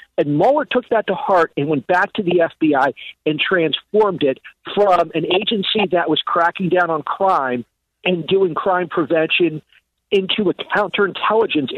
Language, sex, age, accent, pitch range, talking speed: English, male, 50-69, American, 155-205 Hz, 160 wpm